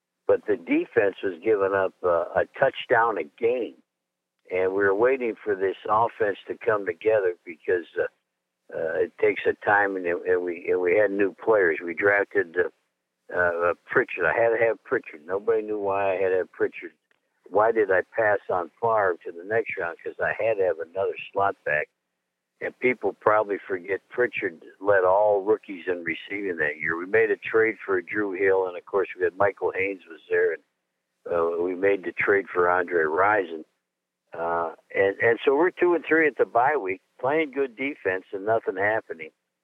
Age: 60-79